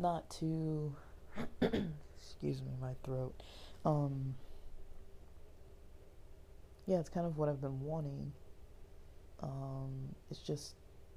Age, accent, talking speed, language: 20-39, American, 95 wpm, English